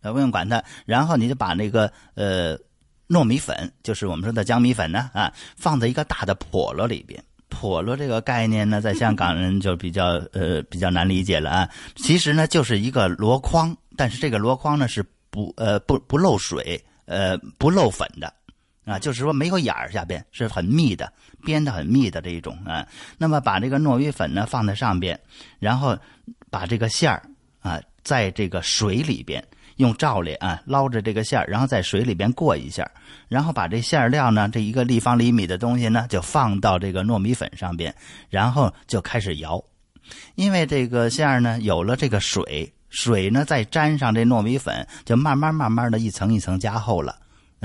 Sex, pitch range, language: male, 100-135 Hz, Chinese